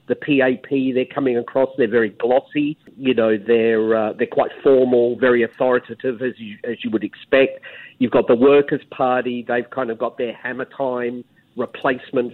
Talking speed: 175 wpm